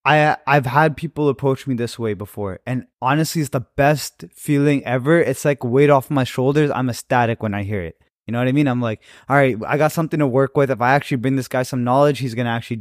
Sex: male